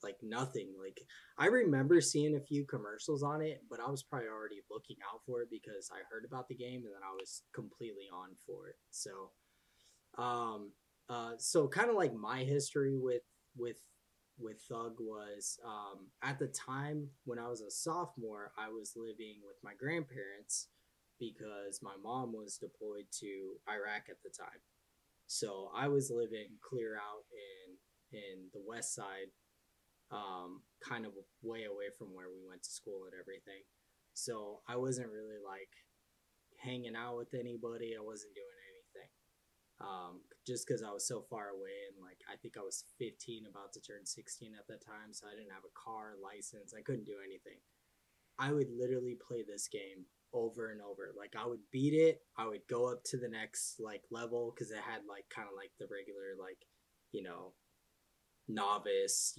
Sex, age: male, 10-29